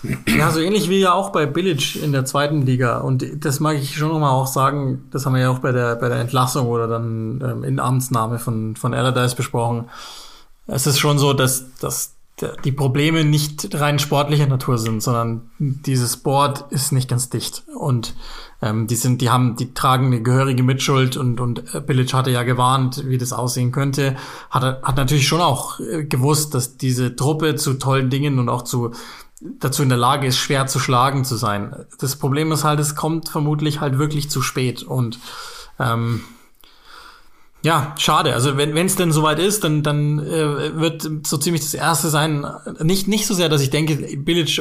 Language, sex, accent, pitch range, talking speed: German, male, German, 125-150 Hz, 195 wpm